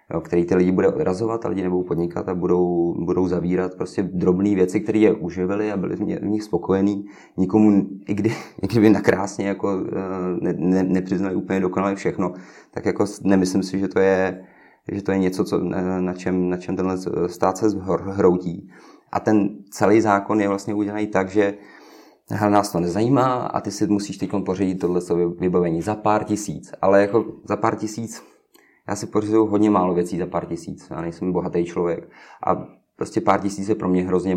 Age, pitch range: 30-49, 90-100 Hz